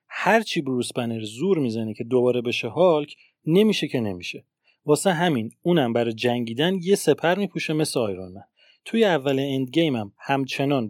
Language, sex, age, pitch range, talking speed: Persian, male, 30-49, 120-160 Hz, 160 wpm